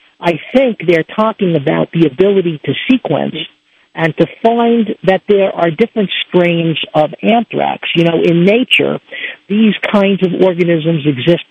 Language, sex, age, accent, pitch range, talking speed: English, male, 50-69, American, 165-215 Hz, 145 wpm